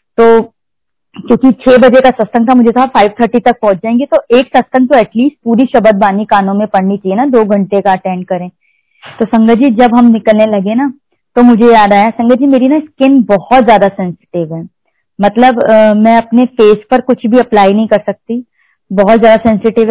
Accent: native